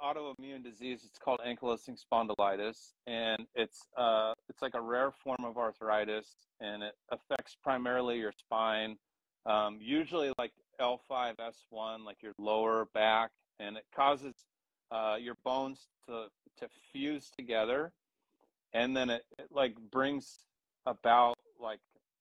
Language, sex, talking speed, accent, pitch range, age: English, male, 130 wpm, American, 110-130 Hz, 30-49